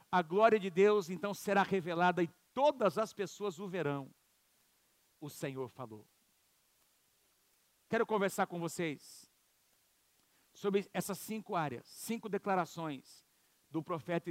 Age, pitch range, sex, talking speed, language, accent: 50-69, 180-225 Hz, male, 115 wpm, Portuguese, Brazilian